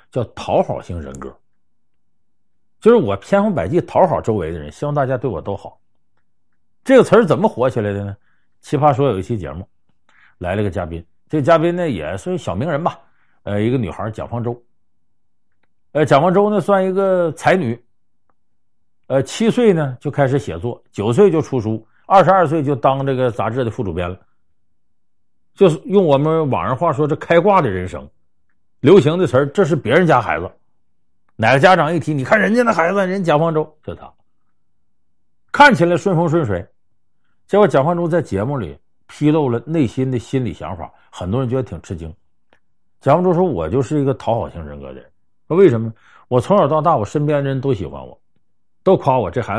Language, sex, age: Chinese, male, 50-69